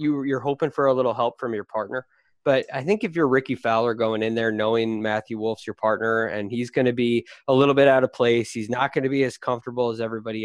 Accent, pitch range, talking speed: American, 115-150 Hz, 260 wpm